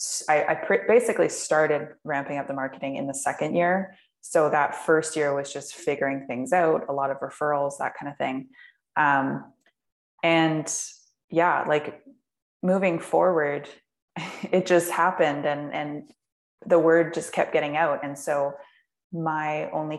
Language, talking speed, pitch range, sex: English, 150 wpm, 145-185 Hz, female